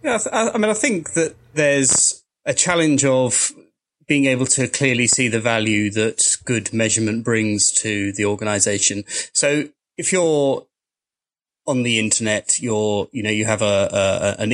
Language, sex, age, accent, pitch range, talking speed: English, male, 20-39, British, 100-115 Hz, 160 wpm